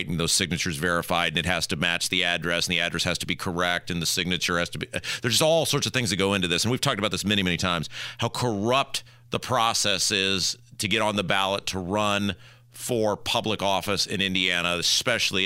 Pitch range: 90-120 Hz